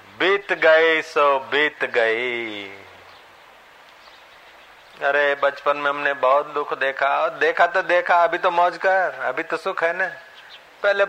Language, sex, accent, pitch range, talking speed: Hindi, male, native, 140-165 Hz, 140 wpm